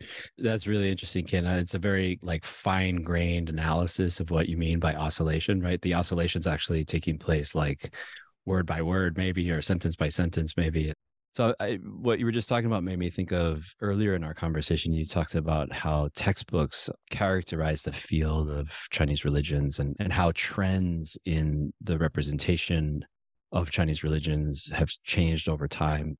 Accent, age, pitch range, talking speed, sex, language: American, 30-49, 75-90 Hz, 170 wpm, male, English